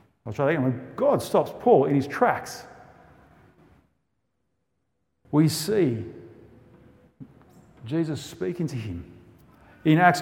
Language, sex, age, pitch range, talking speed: English, male, 50-69, 120-170 Hz, 105 wpm